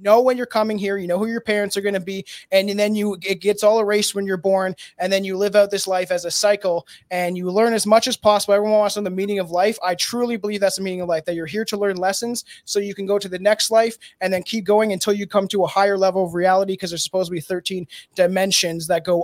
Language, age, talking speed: English, 20-39, 285 wpm